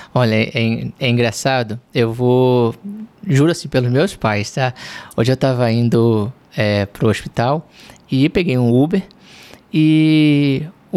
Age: 20-39